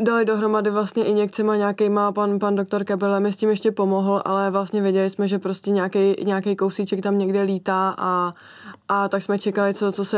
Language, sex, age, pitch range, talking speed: Czech, female, 20-39, 190-200 Hz, 210 wpm